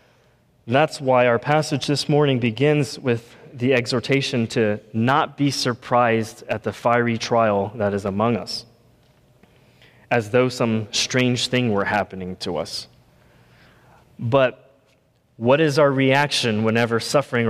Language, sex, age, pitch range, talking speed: English, male, 20-39, 115-135 Hz, 130 wpm